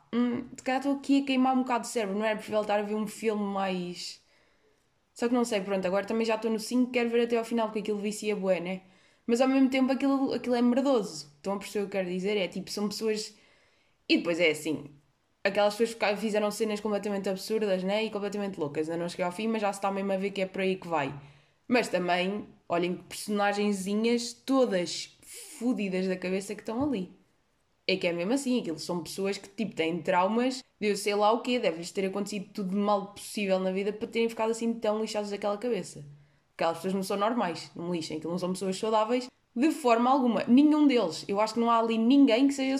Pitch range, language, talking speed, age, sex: 185-230 Hz, Portuguese, 235 wpm, 20-39, female